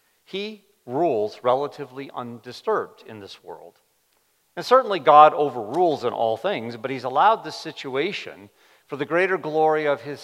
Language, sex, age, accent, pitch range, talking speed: English, male, 50-69, American, 135-190 Hz, 145 wpm